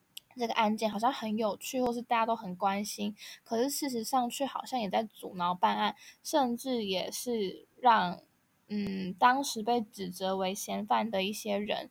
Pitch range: 195-235 Hz